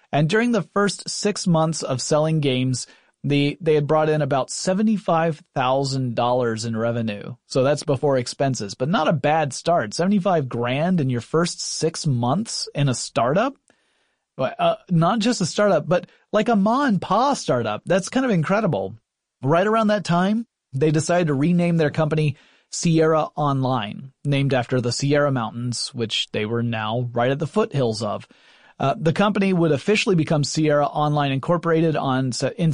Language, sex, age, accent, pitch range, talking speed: English, male, 30-49, American, 130-175 Hz, 165 wpm